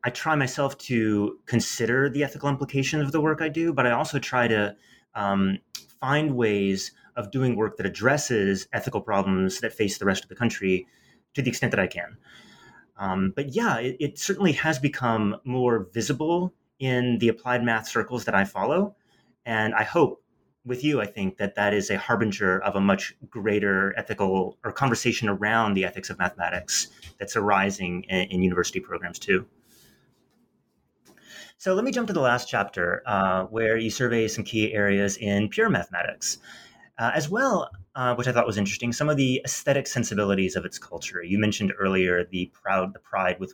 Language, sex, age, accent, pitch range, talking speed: English, male, 30-49, American, 100-140 Hz, 185 wpm